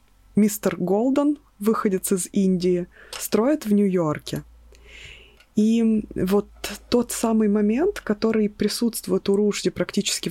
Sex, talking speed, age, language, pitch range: female, 105 wpm, 20-39, Russian, 185-220 Hz